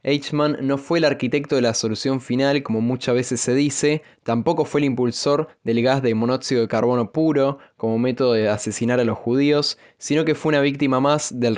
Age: 10-29